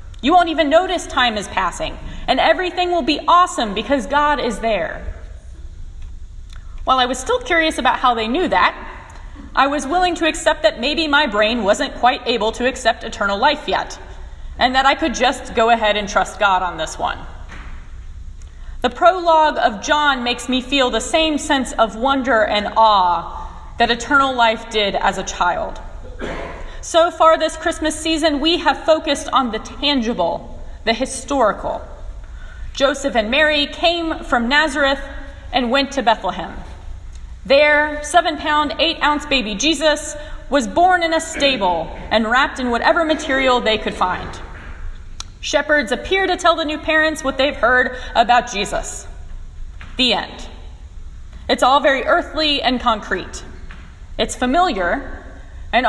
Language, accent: English, American